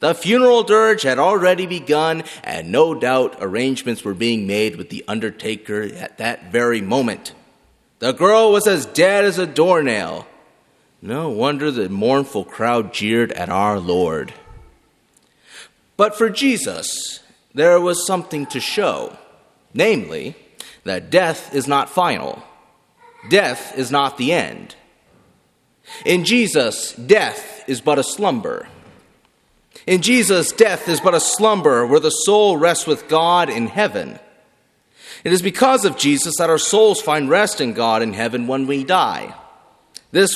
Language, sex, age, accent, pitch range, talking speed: English, male, 30-49, American, 140-215 Hz, 145 wpm